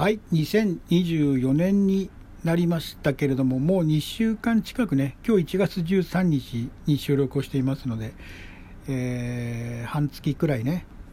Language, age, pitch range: Japanese, 60-79, 120-175 Hz